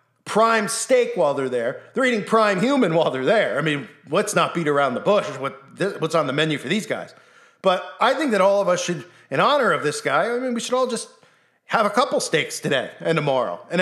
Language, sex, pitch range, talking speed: English, male, 165-230 Hz, 245 wpm